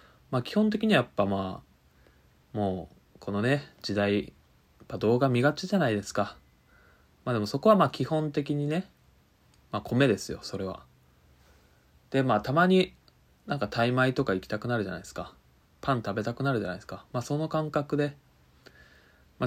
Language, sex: Japanese, male